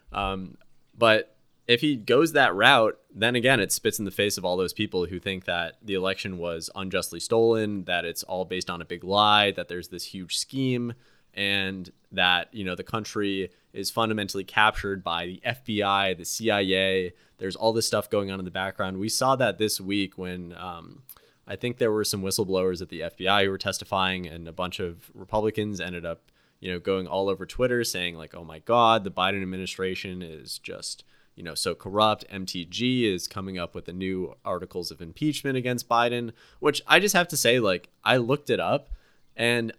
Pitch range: 95-115 Hz